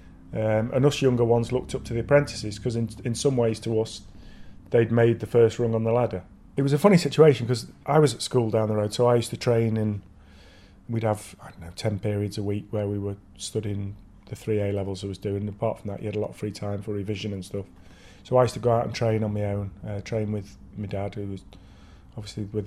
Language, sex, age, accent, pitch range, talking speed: English, male, 30-49, British, 100-120 Hz, 255 wpm